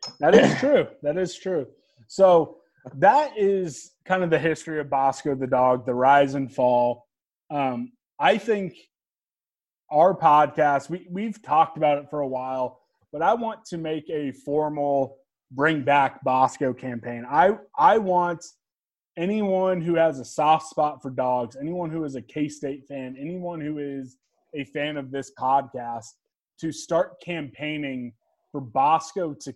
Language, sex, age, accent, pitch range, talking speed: English, male, 20-39, American, 130-165 Hz, 155 wpm